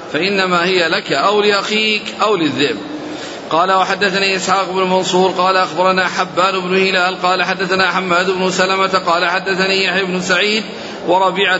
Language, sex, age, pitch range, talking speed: Arabic, male, 40-59, 175-195 Hz, 145 wpm